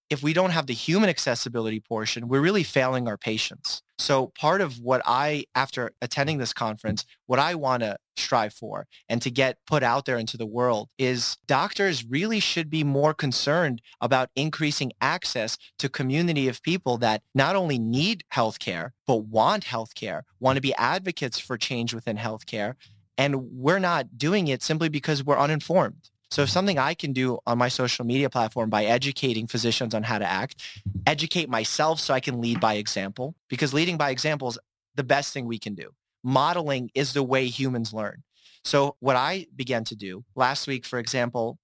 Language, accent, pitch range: English, American, 115-145 Hz